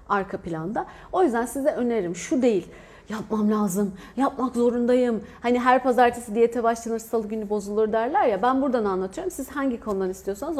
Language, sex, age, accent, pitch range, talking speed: Turkish, female, 40-59, native, 220-285 Hz, 165 wpm